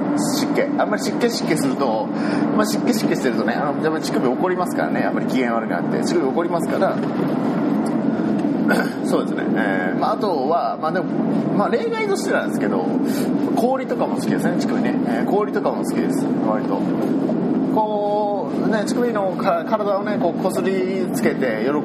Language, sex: Japanese, male